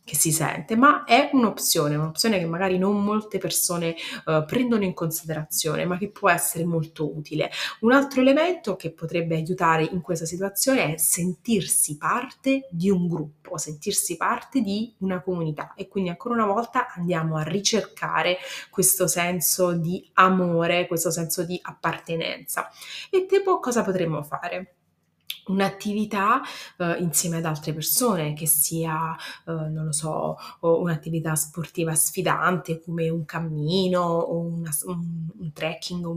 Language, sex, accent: Italian, female, native